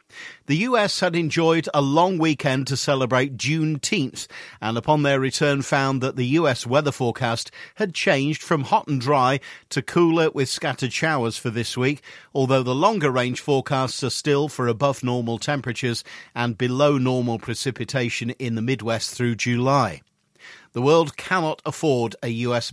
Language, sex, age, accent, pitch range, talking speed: English, male, 50-69, British, 125-155 Hz, 150 wpm